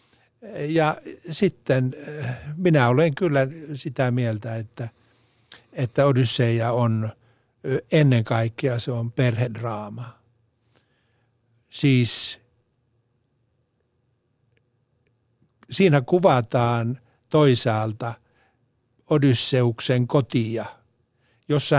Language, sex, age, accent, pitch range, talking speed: Finnish, male, 60-79, native, 120-140 Hz, 65 wpm